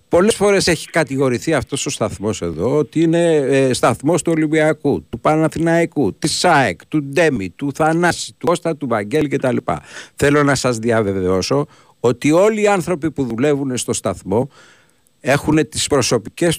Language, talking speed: Greek, 160 wpm